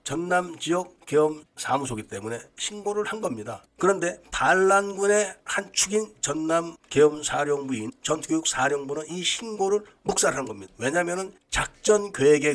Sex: male